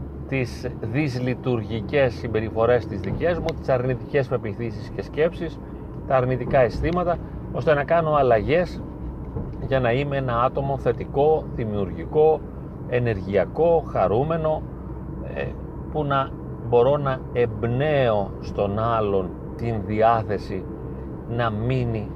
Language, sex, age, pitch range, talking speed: Greek, male, 40-59, 110-140 Hz, 105 wpm